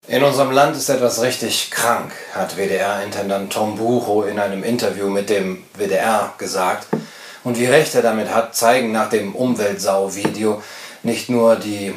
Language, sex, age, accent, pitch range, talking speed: English, male, 40-59, German, 105-125 Hz, 155 wpm